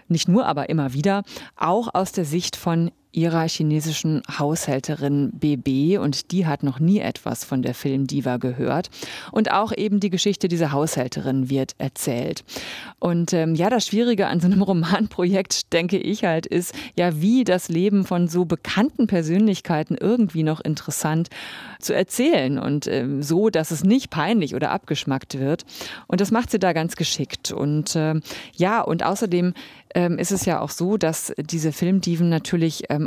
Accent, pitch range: German, 150-185 Hz